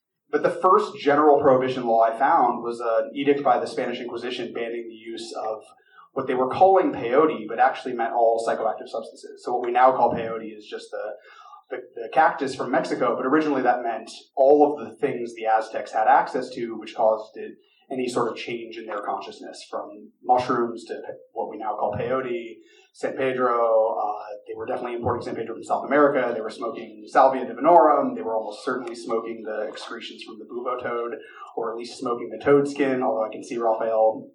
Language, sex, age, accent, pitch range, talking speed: English, male, 30-49, American, 115-190 Hz, 200 wpm